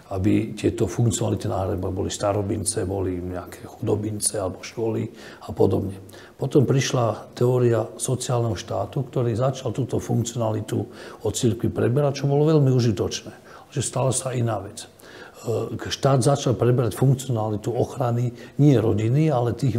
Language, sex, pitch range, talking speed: Slovak, male, 105-125 Hz, 125 wpm